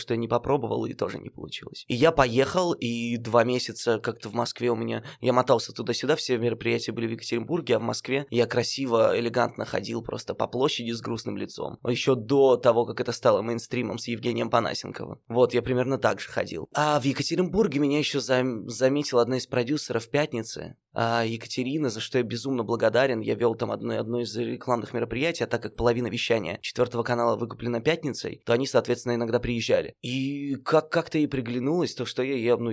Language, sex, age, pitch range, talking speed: Russian, male, 20-39, 115-135 Hz, 195 wpm